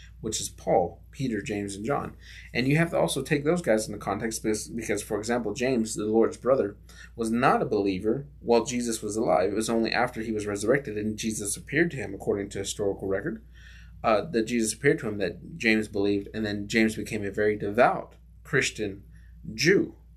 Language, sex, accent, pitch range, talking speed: English, male, American, 100-120 Hz, 200 wpm